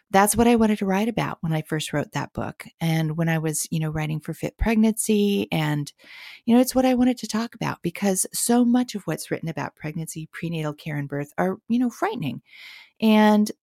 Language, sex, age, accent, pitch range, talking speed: English, female, 40-59, American, 165-230 Hz, 220 wpm